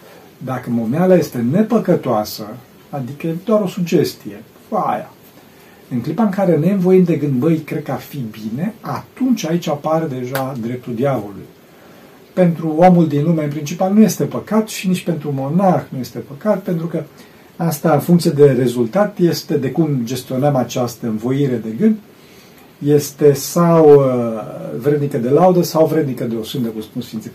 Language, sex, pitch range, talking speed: Romanian, male, 130-185 Hz, 160 wpm